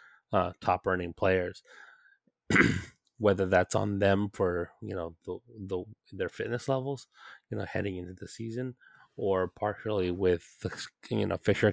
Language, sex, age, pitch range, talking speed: English, male, 20-39, 90-105 Hz, 145 wpm